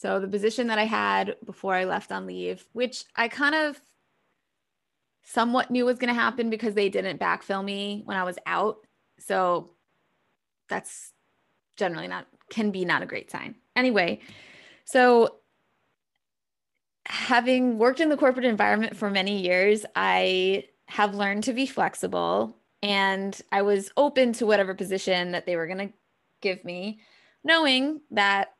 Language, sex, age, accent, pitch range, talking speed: English, female, 20-39, American, 195-240 Hz, 155 wpm